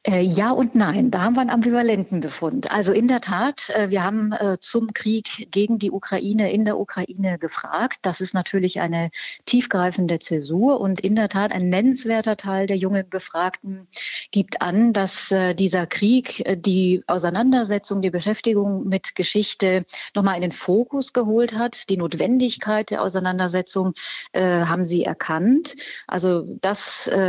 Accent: German